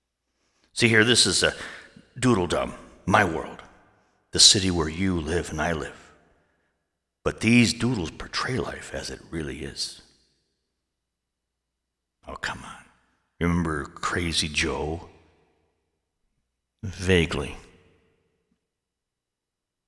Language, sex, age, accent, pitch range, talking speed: English, male, 60-79, American, 70-95 Hz, 100 wpm